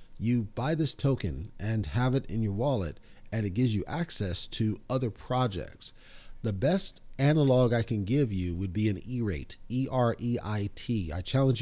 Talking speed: 170 wpm